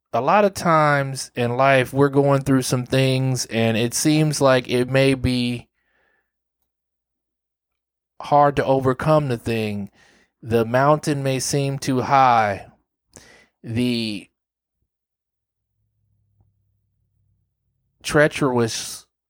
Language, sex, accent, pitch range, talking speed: English, male, American, 100-135 Hz, 95 wpm